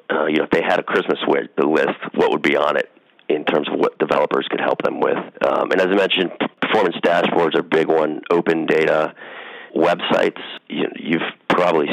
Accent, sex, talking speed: American, male, 200 wpm